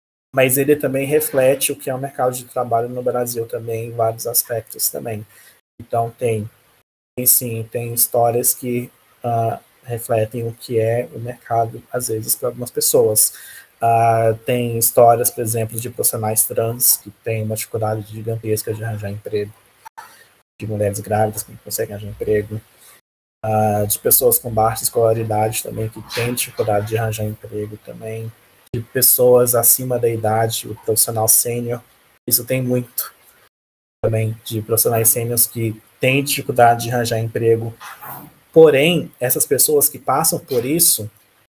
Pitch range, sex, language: 110-130 Hz, male, Portuguese